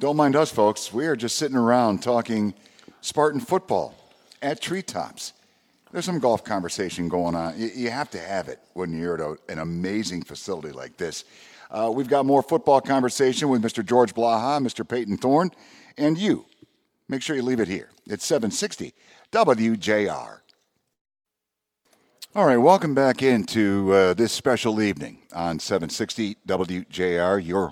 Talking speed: 150 wpm